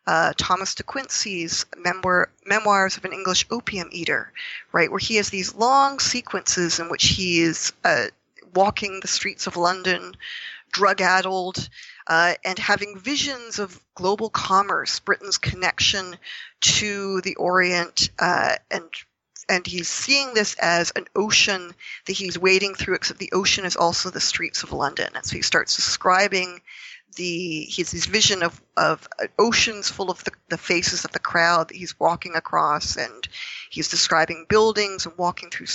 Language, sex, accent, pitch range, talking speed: English, female, American, 175-205 Hz, 155 wpm